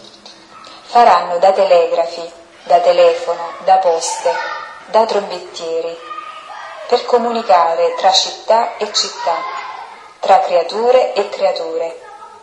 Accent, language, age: native, Italian, 30-49